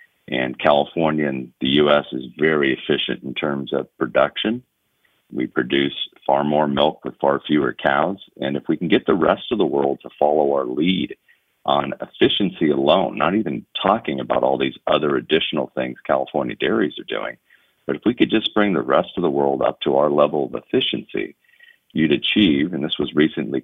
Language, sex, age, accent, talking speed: English, male, 40-59, American, 190 wpm